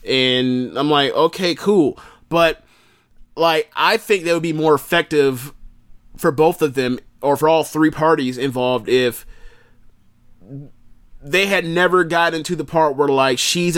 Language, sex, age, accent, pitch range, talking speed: English, male, 30-49, American, 125-155 Hz, 155 wpm